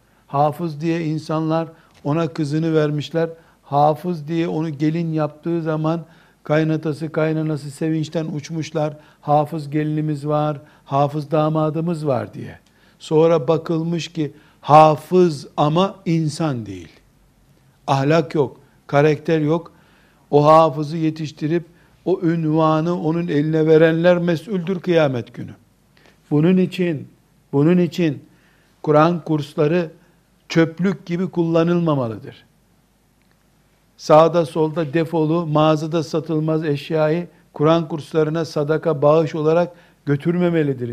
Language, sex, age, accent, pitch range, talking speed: Turkish, male, 60-79, native, 150-170 Hz, 95 wpm